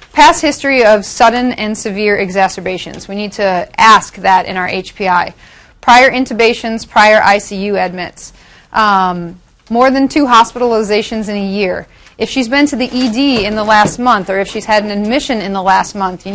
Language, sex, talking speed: English, female, 180 wpm